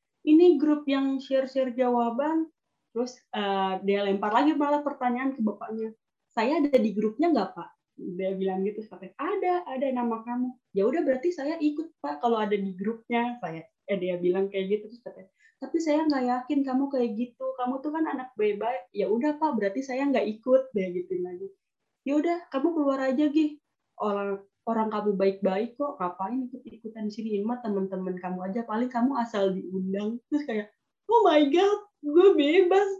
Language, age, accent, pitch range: Indonesian, 20-39, native, 215-290 Hz